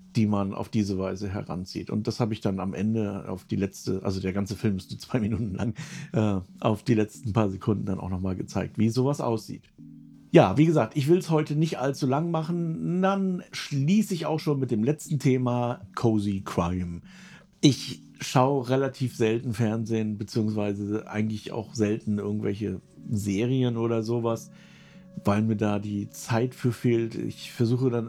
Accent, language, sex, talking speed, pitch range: German, German, male, 175 wpm, 105-145 Hz